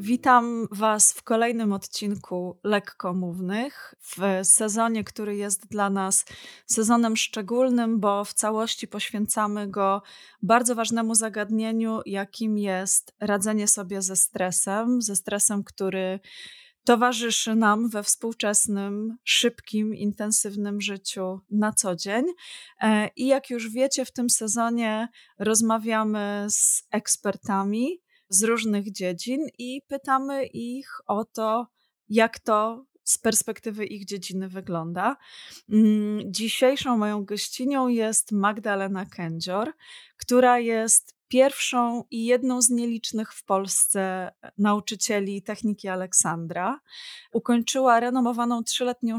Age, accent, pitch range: 20-39, native, 205-240 Hz